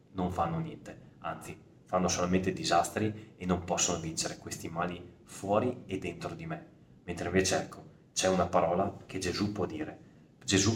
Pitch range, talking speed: 85-100 Hz, 160 wpm